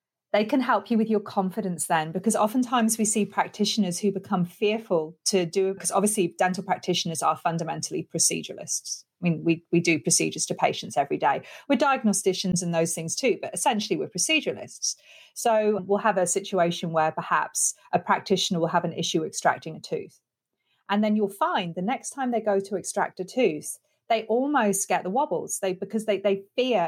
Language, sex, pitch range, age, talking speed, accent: English, female, 175-215 Hz, 30-49, 190 wpm, British